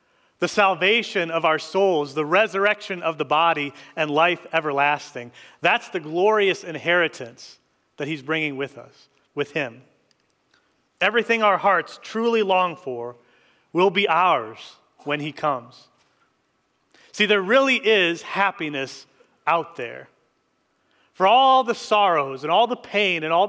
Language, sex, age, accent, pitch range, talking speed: English, male, 30-49, American, 155-220 Hz, 135 wpm